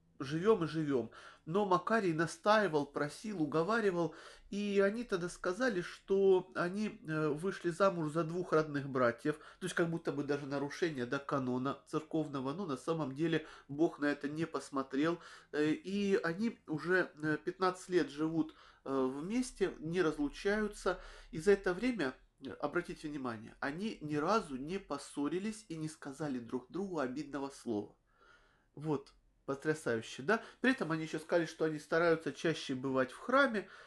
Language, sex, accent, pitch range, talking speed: Russian, male, native, 140-180 Hz, 140 wpm